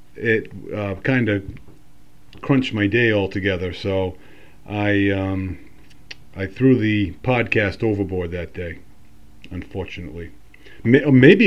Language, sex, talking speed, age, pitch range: English, male, 105 wpm, 40-59, 95-115 Hz